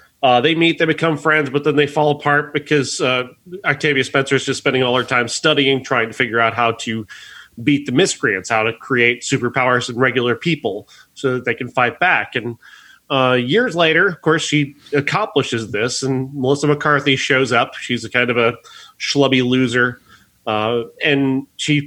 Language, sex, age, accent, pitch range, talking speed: English, male, 30-49, American, 125-155 Hz, 185 wpm